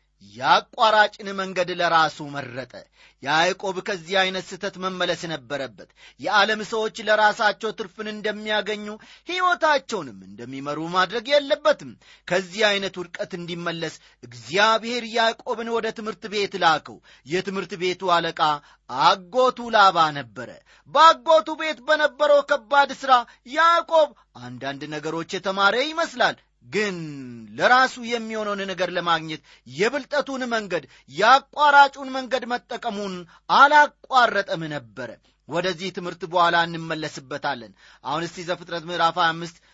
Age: 30-49